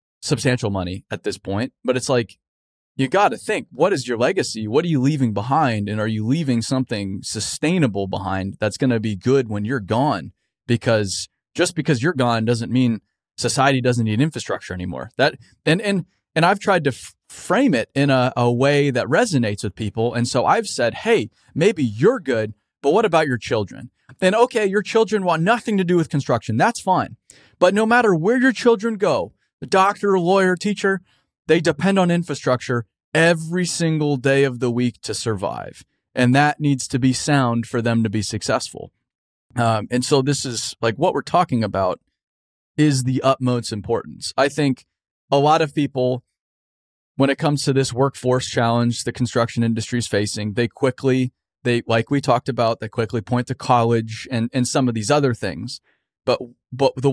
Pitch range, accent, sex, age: 115-150 Hz, American, male, 20-39